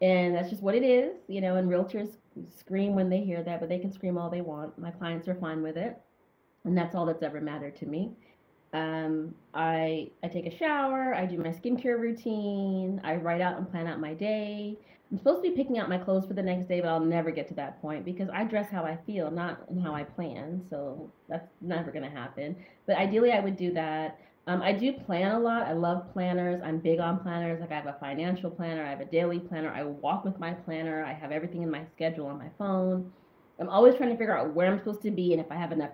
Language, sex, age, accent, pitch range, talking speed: English, female, 30-49, American, 155-190 Hz, 250 wpm